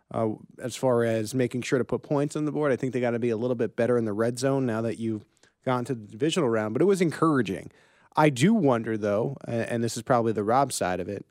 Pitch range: 110-130 Hz